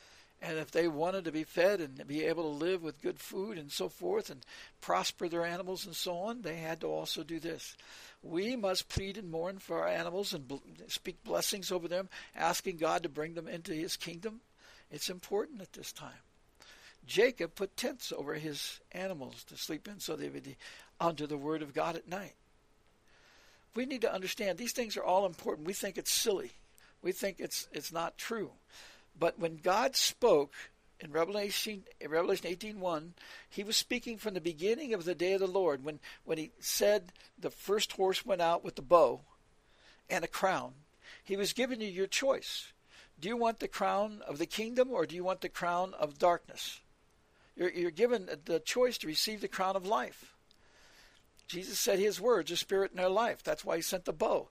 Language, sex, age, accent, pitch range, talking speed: English, male, 60-79, American, 165-215 Hz, 195 wpm